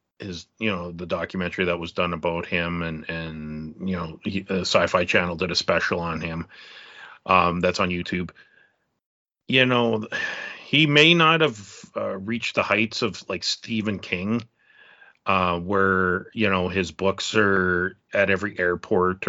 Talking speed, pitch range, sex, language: 160 wpm, 90-115 Hz, male, English